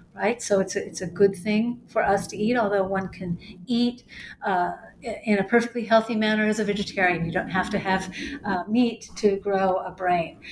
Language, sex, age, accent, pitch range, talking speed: English, female, 50-69, American, 190-230 Hz, 200 wpm